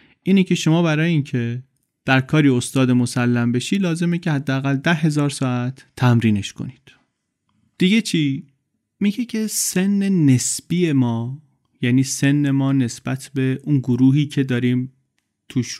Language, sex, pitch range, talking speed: Persian, male, 120-150 Hz, 135 wpm